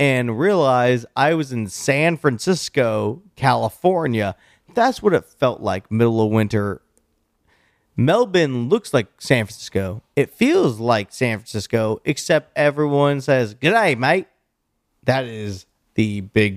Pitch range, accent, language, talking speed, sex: 105-130 Hz, American, English, 130 wpm, male